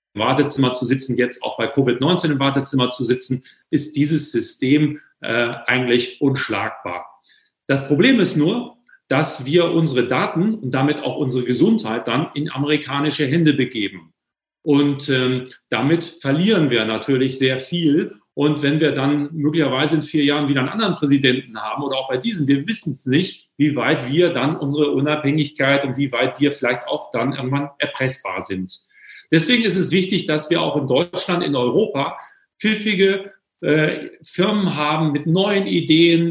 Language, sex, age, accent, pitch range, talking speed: German, male, 40-59, German, 130-160 Hz, 165 wpm